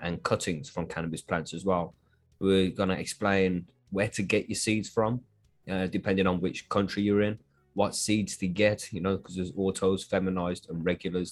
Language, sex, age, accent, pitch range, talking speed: English, male, 20-39, British, 90-105 Hz, 190 wpm